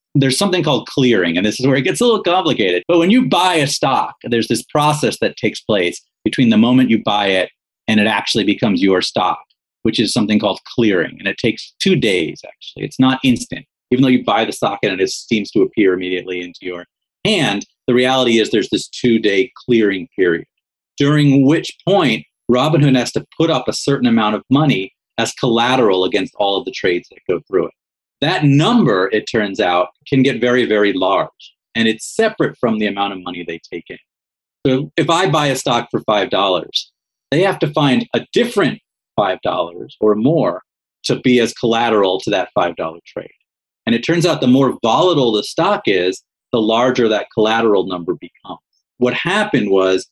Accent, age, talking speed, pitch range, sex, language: American, 30-49, 195 wpm, 105-140 Hz, male, English